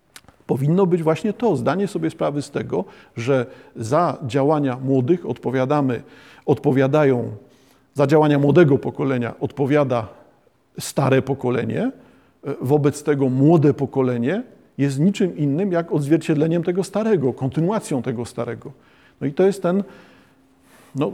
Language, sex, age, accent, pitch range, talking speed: Polish, male, 40-59, native, 130-150 Hz, 120 wpm